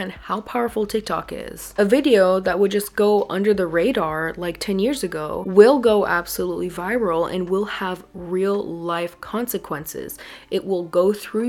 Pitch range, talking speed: 180-220 Hz, 165 wpm